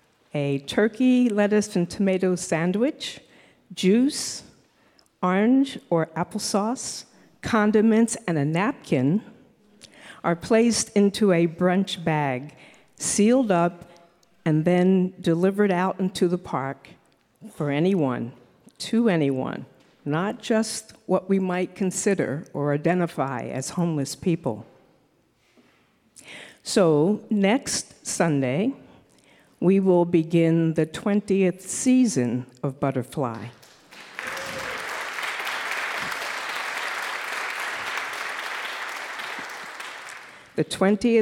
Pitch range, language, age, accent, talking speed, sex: 155-205 Hz, English, 50-69, American, 80 wpm, female